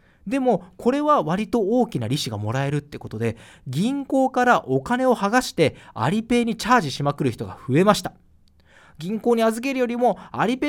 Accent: native